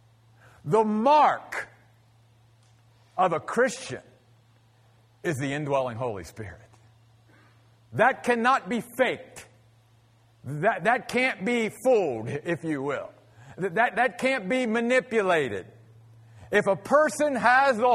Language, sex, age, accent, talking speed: English, male, 50-69, American, 105 wpm